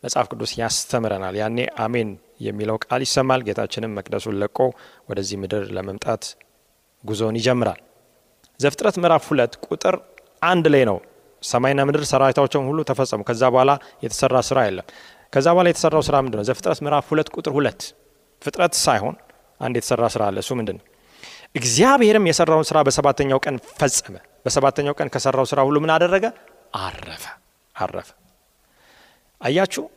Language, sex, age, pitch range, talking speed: Amharic, male, 30-49, 125-185 Hz, 95 wpm